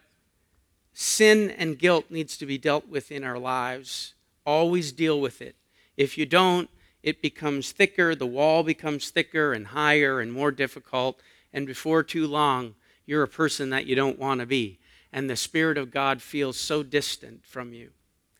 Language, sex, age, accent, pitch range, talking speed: English, male, 50-69, American, 130-175 Hz, 175 wpm